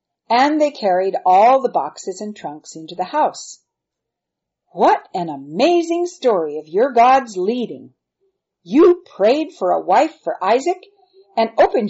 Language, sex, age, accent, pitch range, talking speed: English, female, 50-69, American, 185-310 Hz, 140 wpm